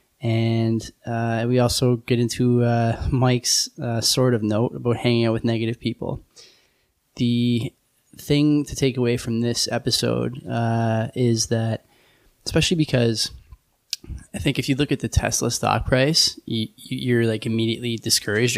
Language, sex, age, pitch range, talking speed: English, male, 10-29, 110-125 Hz, 150 wpm